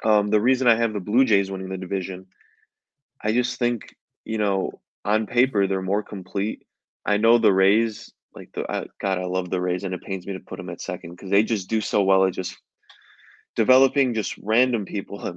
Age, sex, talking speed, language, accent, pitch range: 20-39, male, 215 wpm, English, American, 95-110 Hz